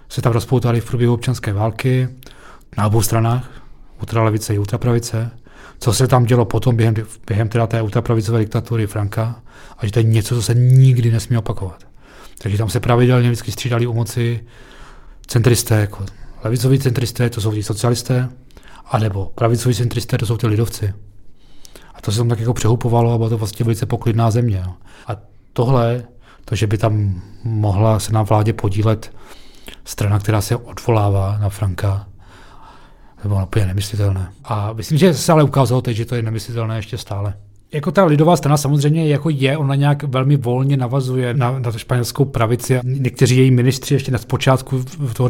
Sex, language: male, Czech